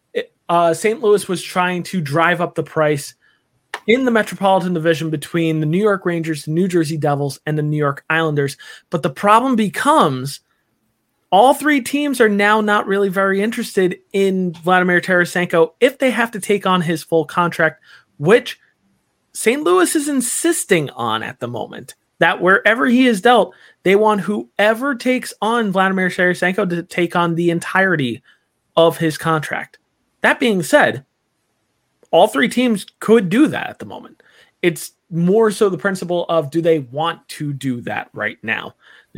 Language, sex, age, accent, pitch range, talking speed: English, male, 20-39, American, 160-210 Hz, 165 wpm